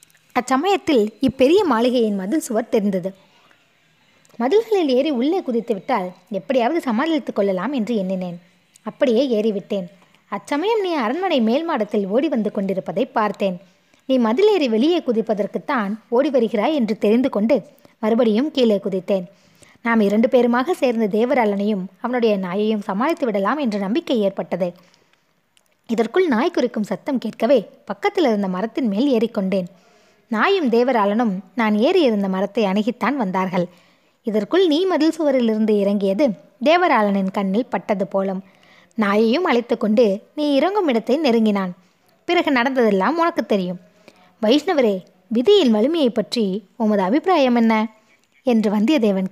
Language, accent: Tamil, native